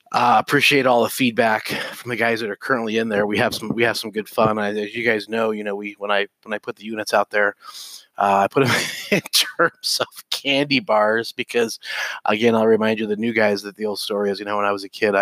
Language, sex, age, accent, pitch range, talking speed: English, male, 20-39, American, 100-120 Hz, 270 wpm